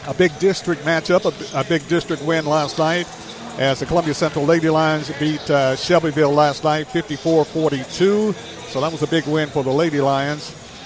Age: 50-69